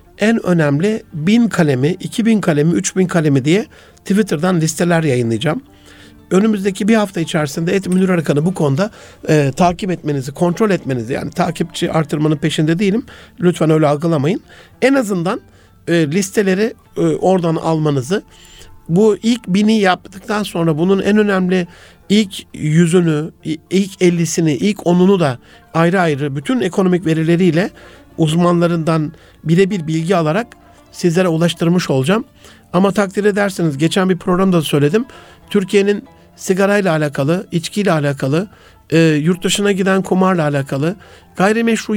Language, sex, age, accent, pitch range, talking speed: Turkish, male, 60-79, native, 160-200 Hz, 130 wpm